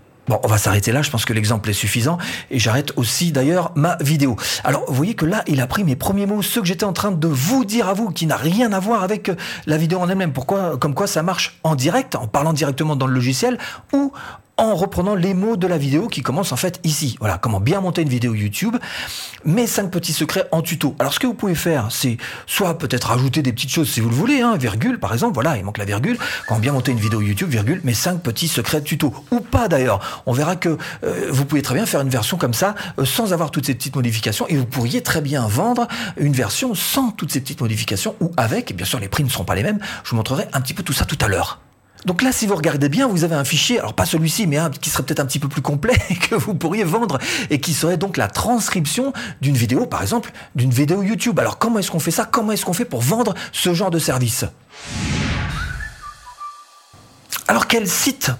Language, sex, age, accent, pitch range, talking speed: French, male, 40-59, French, 130-195 Hz, 250 wpm